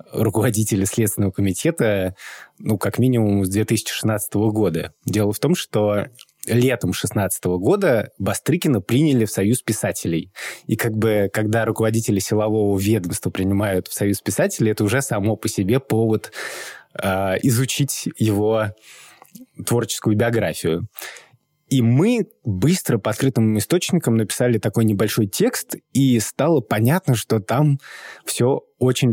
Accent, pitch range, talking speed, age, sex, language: native, 105-130 Hz, 125 wpm, 20-39, male, Russian